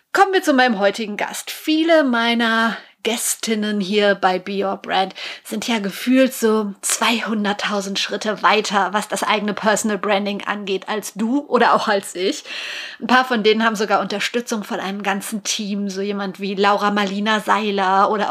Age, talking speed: 30-49, 165 wpm